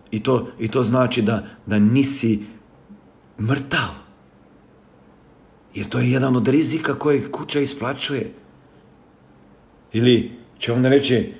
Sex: male